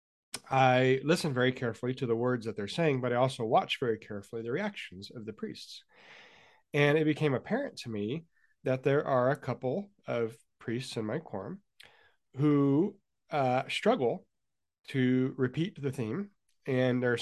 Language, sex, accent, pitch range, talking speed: English, male, American, 120-145 Hz, 165 wpm